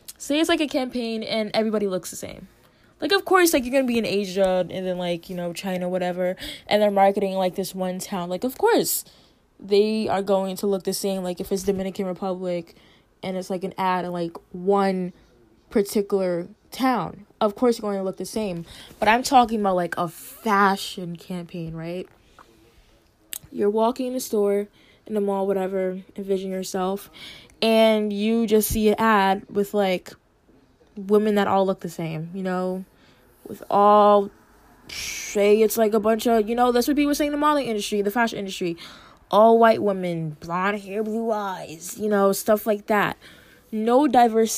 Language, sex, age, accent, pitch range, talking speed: English, female, 10-29, American, 185-220 Hz, 185 wpm